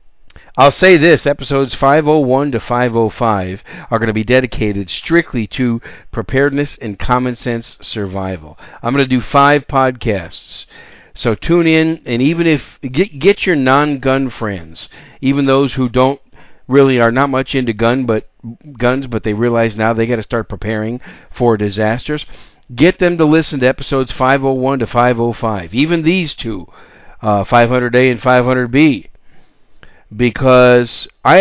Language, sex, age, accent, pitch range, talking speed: English, male, 50-69, American, 115-145 Hz, 145 wpm